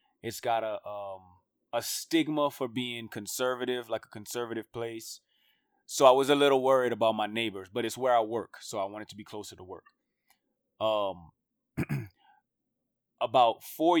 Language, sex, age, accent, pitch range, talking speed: English, male, 20-39, American, 105-130 Hz, 165 wpm